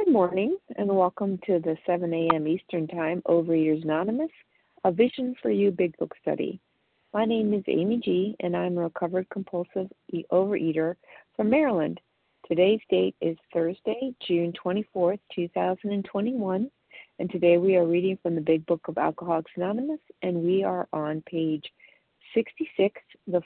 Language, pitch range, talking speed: English, 175-220 Hz, 150 wpm